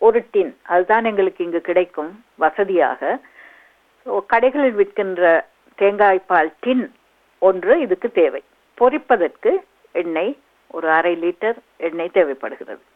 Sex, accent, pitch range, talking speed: female, native, 195-325 Hz, 95 wpm